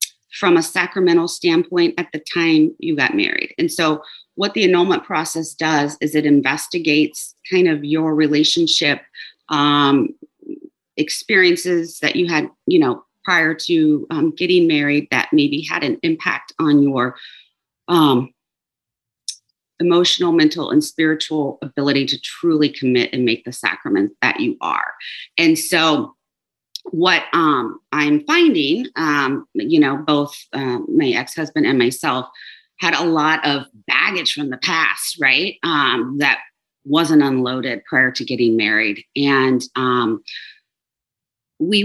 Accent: American